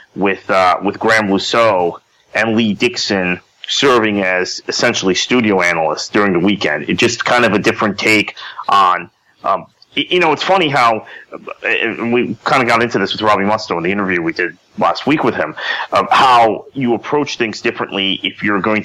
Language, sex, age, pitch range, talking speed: English, male, 30-49, 95-115 Hz, 180 wpm